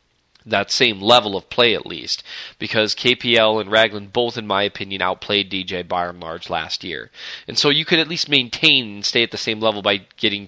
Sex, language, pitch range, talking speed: male, English, 105-130 Hz, 205 wpm